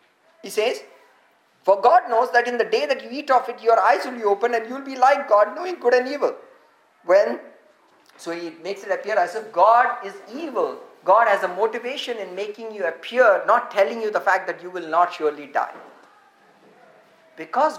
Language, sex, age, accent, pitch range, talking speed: English, male, 50-69, Indian, 190-255 Hz, 200 wpm